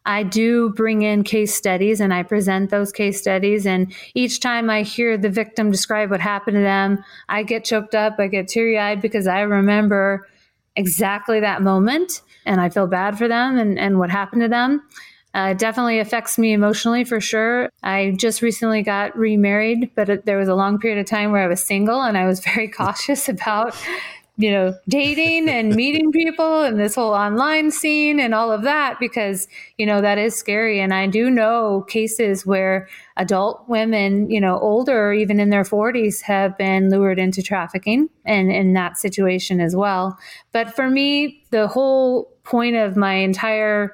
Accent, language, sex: American, English, female